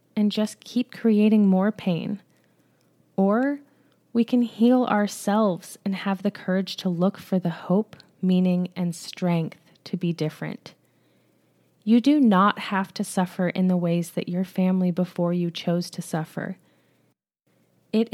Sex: female